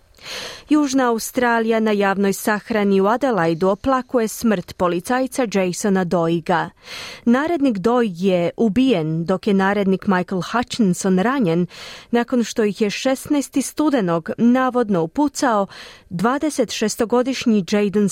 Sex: female